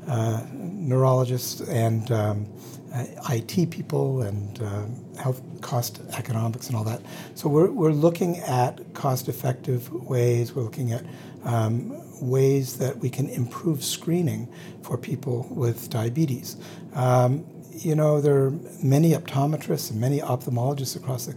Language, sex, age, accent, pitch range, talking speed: English, male, 60-79, American, 120-155 Hz, 135 wpm